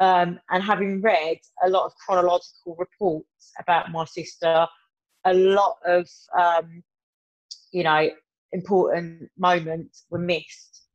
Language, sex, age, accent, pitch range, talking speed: English, female, 30-49, British, 175-210 Hz, 120 wpm